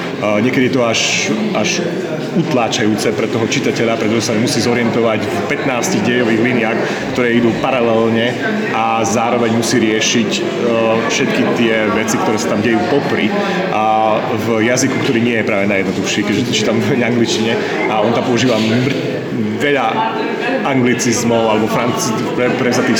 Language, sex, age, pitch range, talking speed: Slovak, male, 30-49, 110-125 Hz, 145 wpm